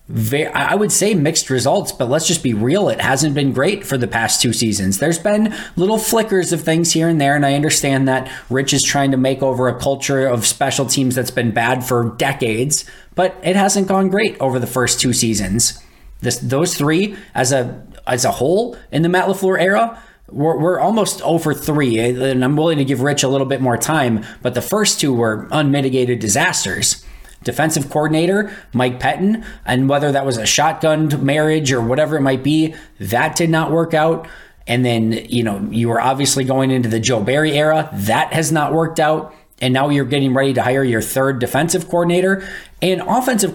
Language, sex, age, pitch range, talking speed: English, male, 20-39, 125-160 Hz, 200 wpm